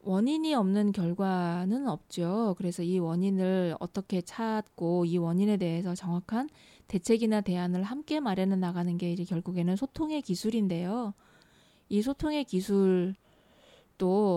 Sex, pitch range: female, 180-230 Hz